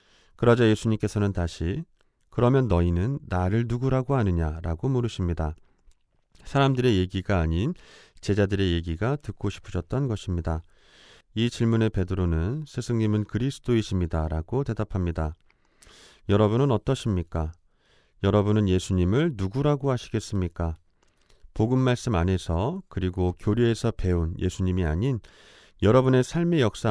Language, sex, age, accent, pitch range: Korean, male, 30-49, native, 90-125 Hz